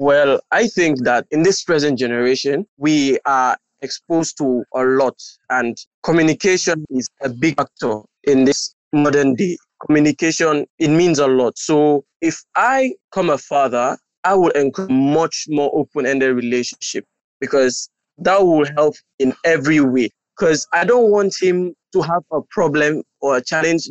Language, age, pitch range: English, 20-39, 140-180 Hz